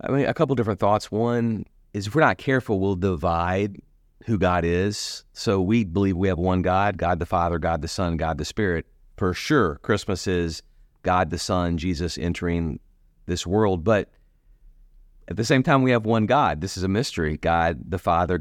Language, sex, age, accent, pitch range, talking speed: English, male, 30-49, American, 85-105 Hz, 195 wpm